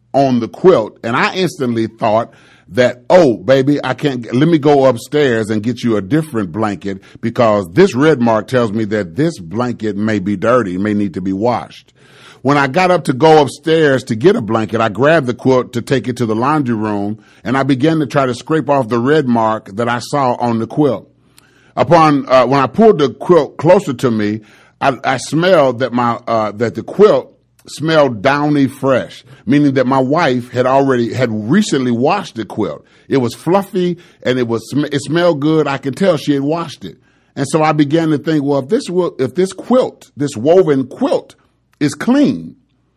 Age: 30-49